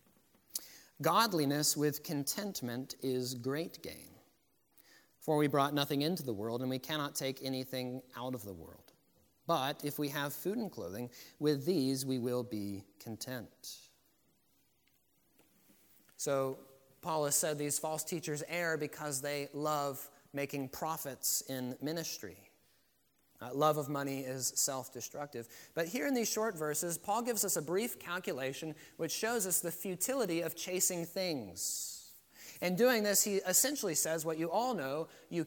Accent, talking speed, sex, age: American, 145 wpm, male, 30-49